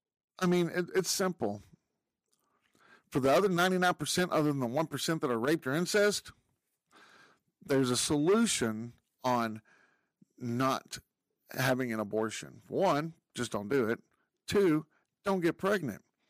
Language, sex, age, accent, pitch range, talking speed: English, male, 50-69, American, 140-220 Hz, 125 wpm